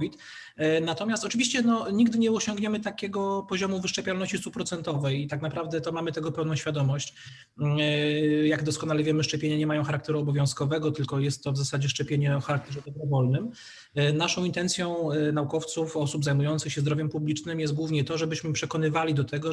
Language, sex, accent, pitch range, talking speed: Polish, male, native, 145-165 Hz, 155 wpm